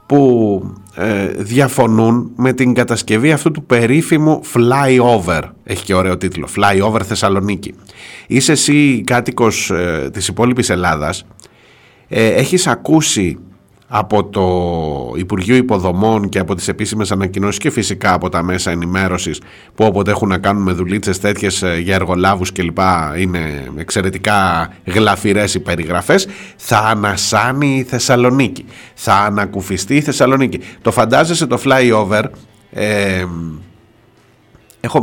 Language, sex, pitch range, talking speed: Greek, male, 95-135 Hz, 120 wpm